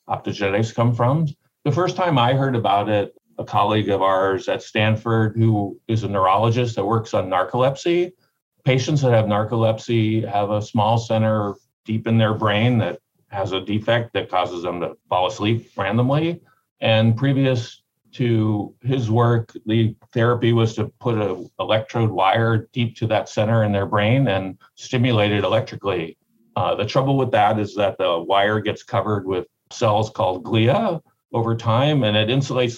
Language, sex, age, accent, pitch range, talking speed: English, male, 50-69, American, 105-120 Hz, 165 wpm